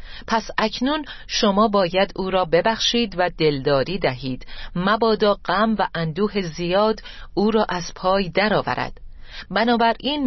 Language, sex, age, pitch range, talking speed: Persian, female, 40-59, 165-220 Hz, 125 wpm